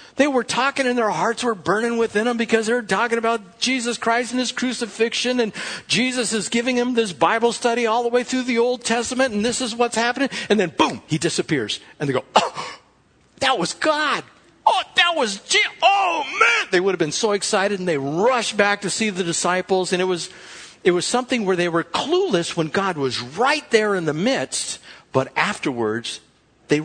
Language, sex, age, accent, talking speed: English, male, 60-79, American, 205 wpm